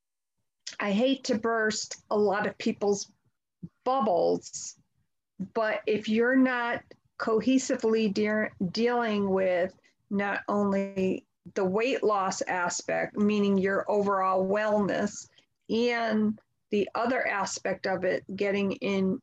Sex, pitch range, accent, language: female, 200-240 Hz, American, English